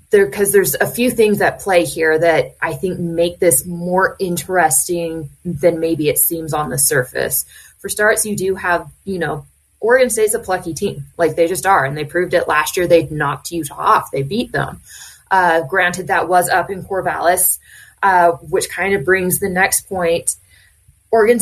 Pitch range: 165-200 Hz